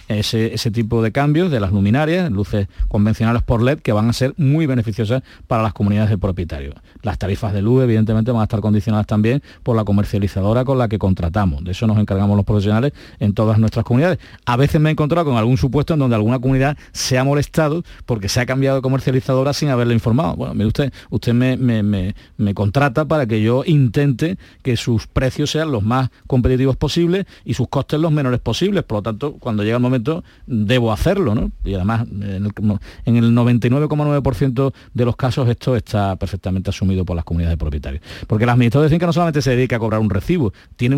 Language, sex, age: Spanish, male, 40-59